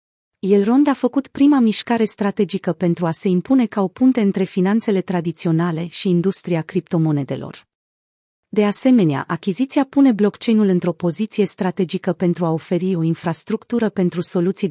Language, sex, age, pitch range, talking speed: Romanian, female, 30-49, 175-220 Hz, 140 wpm